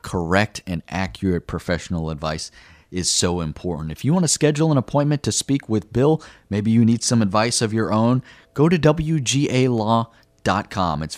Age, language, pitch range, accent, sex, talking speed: 30-49, English, 90-115 Hz, American, male, 165 wpm